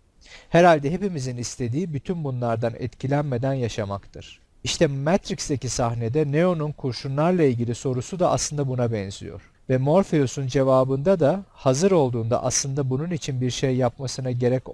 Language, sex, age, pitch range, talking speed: Turkish, male, 40-59, 115-150 Hz, 125 wpm